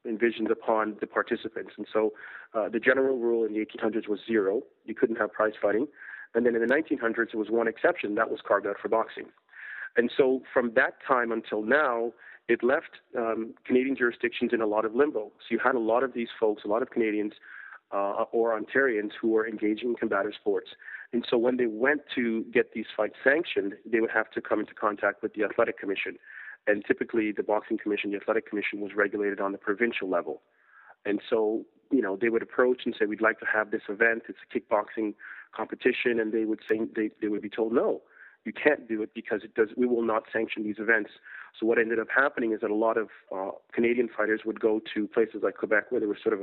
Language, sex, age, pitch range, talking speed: English, male, 40-59, 105-115 Hz, 225 wpm